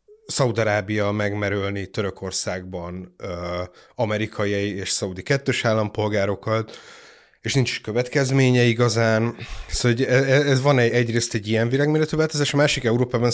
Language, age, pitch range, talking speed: Hungarian, 30-49, 105-130 Hz, 115 wpm